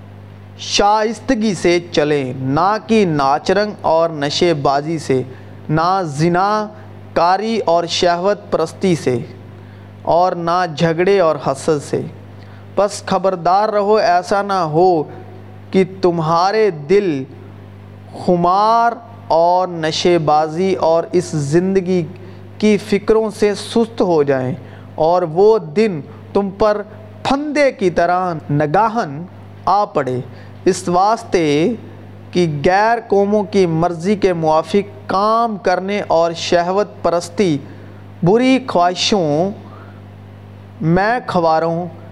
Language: Urdu